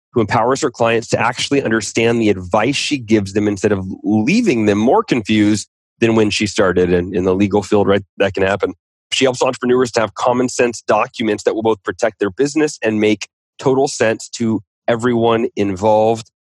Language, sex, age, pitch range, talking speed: English, male, 30-49, 105-120 Hz, 185 wpm